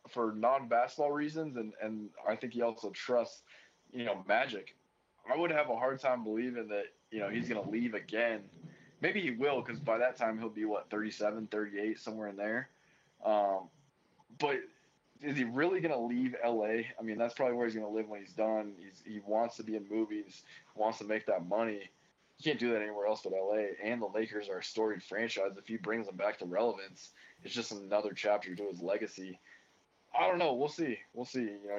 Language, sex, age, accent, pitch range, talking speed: English, male, 20-39, American, 105-120 Hz, 215 wpm